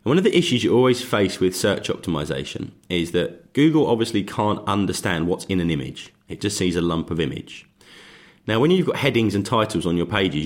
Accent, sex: British, male